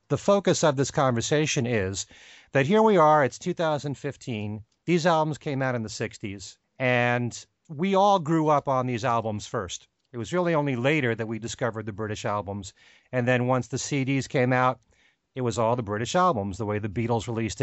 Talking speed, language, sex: 195 wpm, English, male